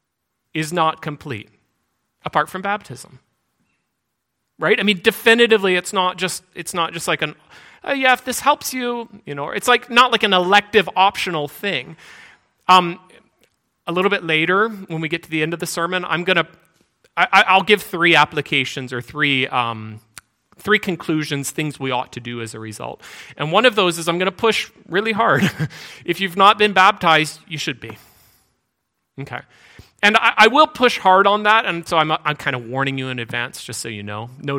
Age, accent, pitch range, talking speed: 30-49, American, 145-205 Hz, 190 wpm